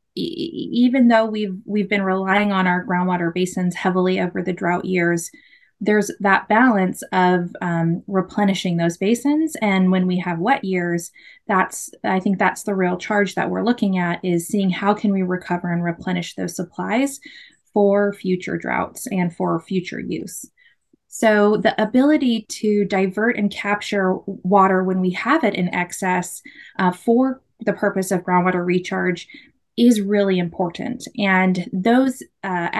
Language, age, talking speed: English, 20-39, 155 wpm